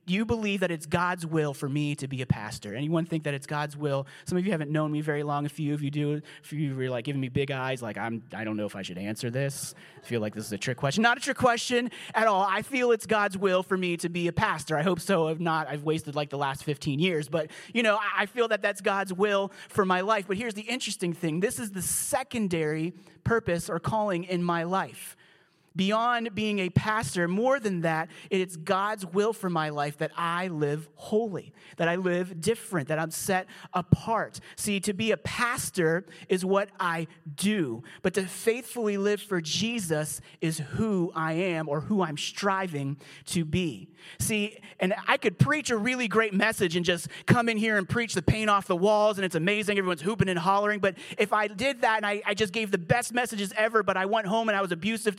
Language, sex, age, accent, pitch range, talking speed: English, male, 30-49, American, 155-210 Hz, 235 wpm